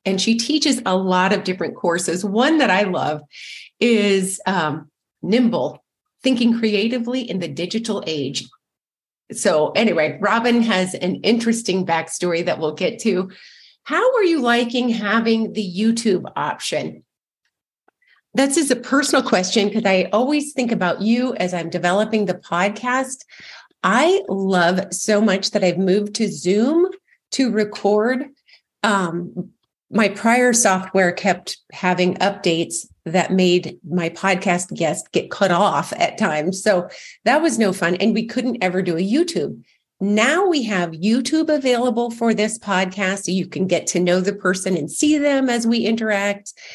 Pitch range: 180-240 Hz